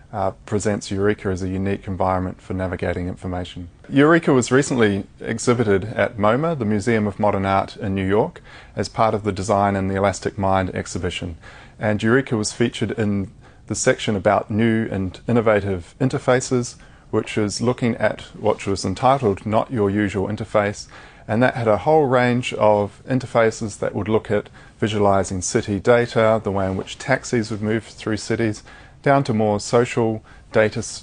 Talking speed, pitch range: 165 wpm, 95-115 Hz